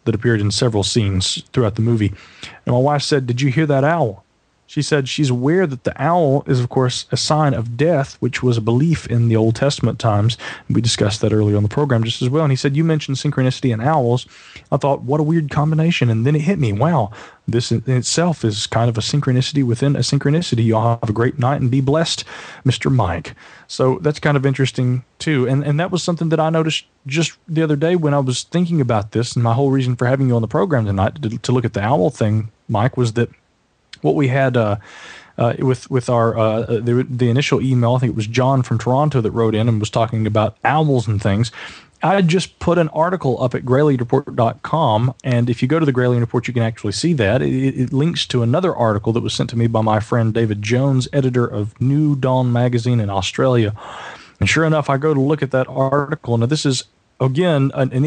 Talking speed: 235 wpm